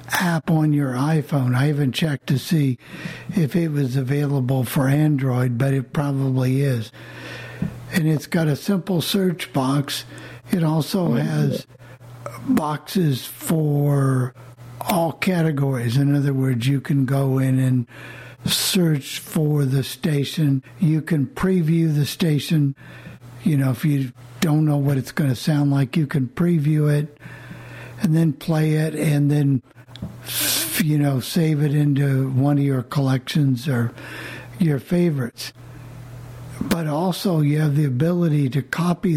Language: English